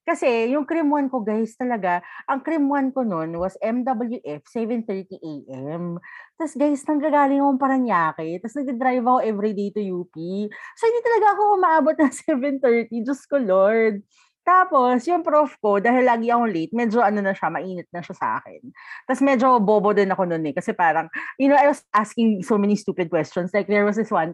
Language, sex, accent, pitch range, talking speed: Filipino, female, native, 180-255 Hz, 185 wpm